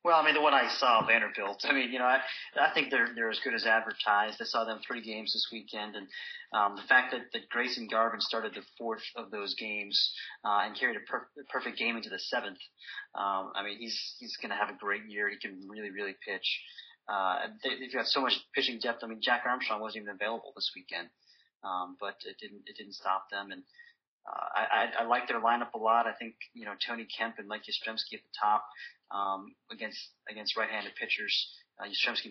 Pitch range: 110-130 Hz